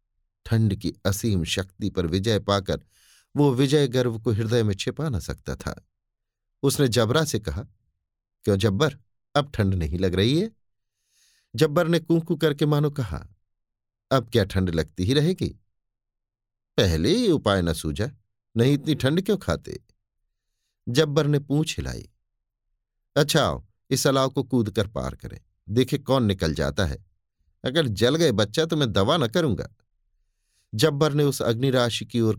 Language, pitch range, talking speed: Hindi, 95-135 Hz, 150 wpm